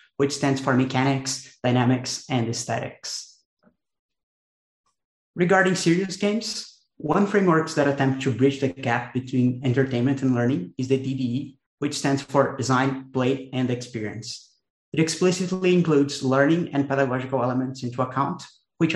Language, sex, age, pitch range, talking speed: English, male, 30-49, 125-155 Hz, 135 wpm